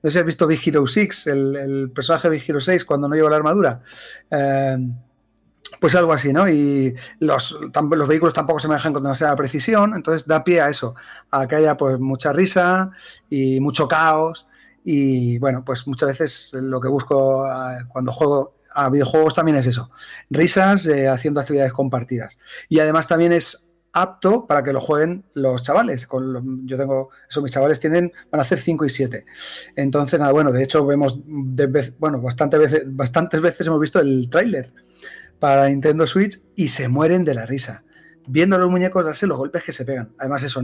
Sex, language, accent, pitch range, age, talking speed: male, Spanish, Spanish, 135-160 Hz, 30-49, 190 wpm